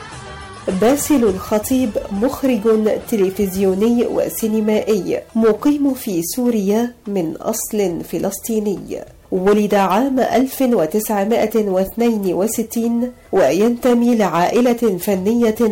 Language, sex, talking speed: Arabic, female, 65 wpm